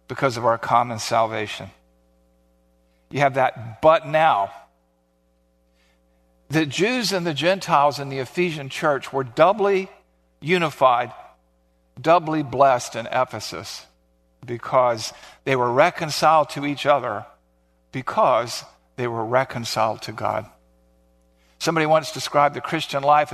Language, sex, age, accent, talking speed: English, male, 50-69, American, 115 wpm